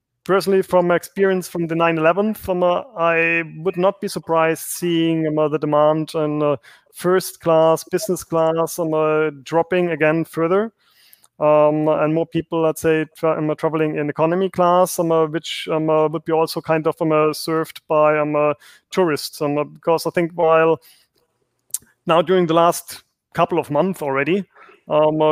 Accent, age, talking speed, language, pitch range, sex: German, 30-49, 175 wpm, English, 150-170 Hz, male